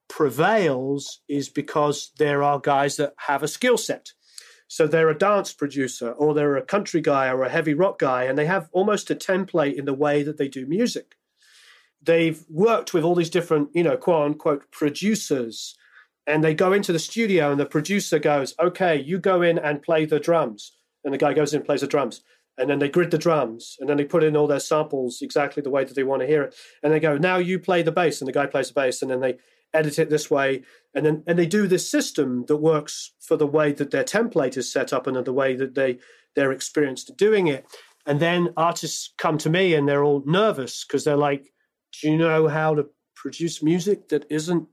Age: 30-49